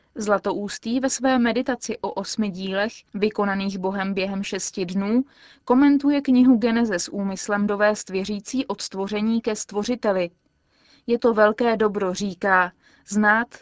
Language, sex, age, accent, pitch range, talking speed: Czech, female, 20-39, native, 205-245 Hz, 130 wpm